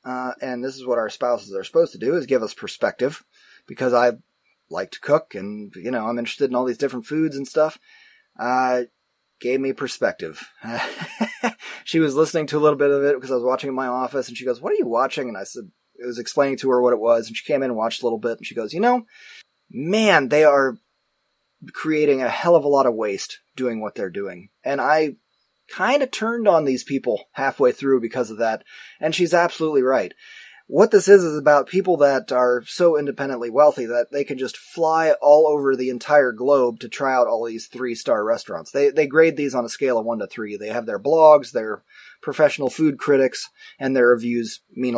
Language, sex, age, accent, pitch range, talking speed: English, male, 20-39, American, 125-155 Hz, 225 wpm